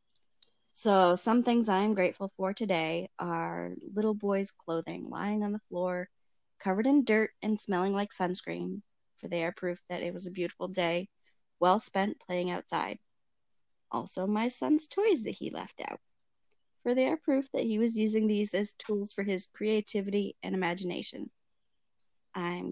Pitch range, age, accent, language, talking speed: 175-215 Hz, 20-39, American, English, 165 wpm